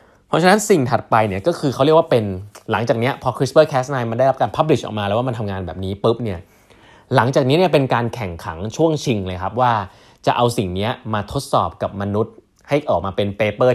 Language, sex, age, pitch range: Thai, male, 20-39, 95-125 Hz